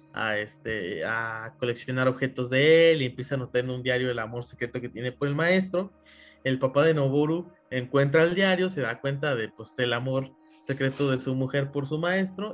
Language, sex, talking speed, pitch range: Spanish, male, 205 wpm, 120-160 Hz